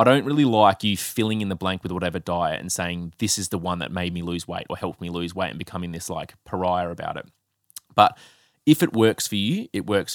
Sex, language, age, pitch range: male, English, 20-39, 90-105 Hz